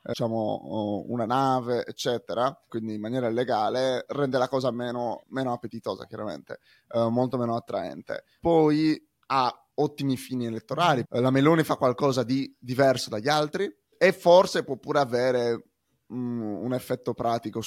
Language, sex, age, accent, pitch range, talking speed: Italian, male, 20-39, native, 120-140 Hz, 140 wpm